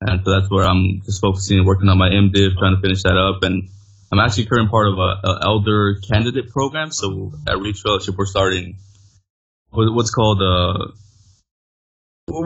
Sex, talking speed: male, 175 wpm